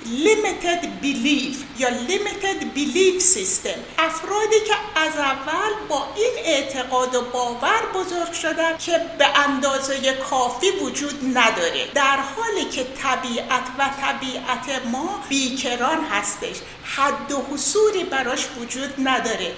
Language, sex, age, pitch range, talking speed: Persian, female, 60-79, 250-335 Hz, 115 wpm